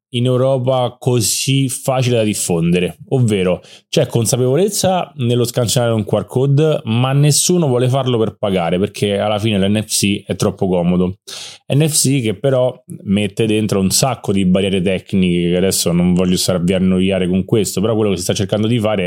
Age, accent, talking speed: 20-39, native, 165 wpm